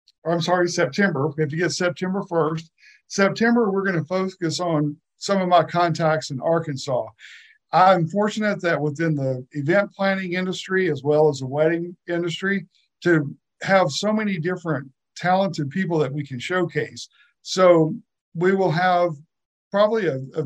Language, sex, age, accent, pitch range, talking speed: English, male, 50-69, American, 150-185 Hz, 155 wpm